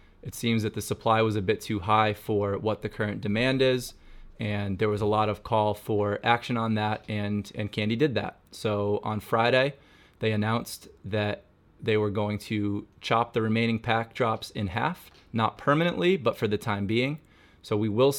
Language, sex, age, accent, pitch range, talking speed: English, male, 20-39, American, 105-120 Hz, 195 wpm